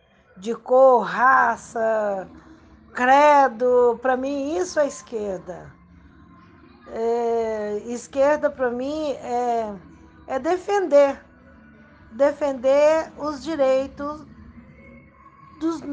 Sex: female